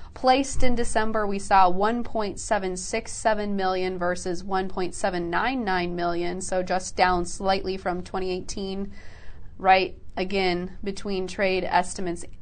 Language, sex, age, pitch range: English, female, 20-39, 180-220 Hz